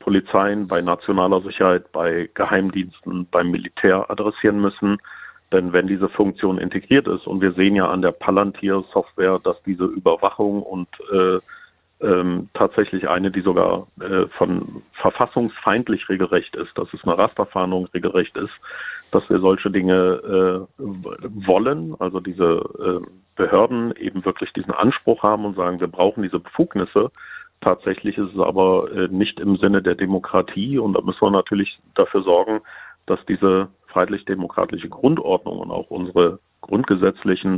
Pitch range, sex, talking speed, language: 90-100 Hz, male, 145 wpm, German